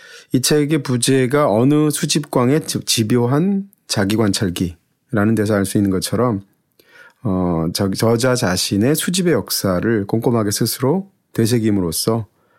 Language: English